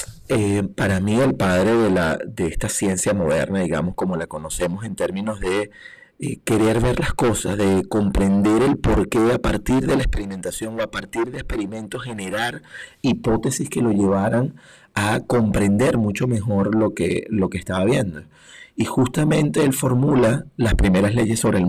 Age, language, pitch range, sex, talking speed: 30-49, Spanish, 95-115 Hz, male, 170 wpm